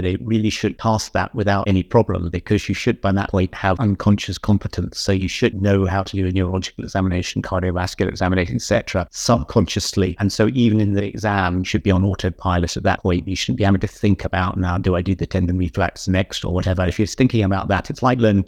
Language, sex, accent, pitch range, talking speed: English, male, British, 95-110 Hz, 225 wpm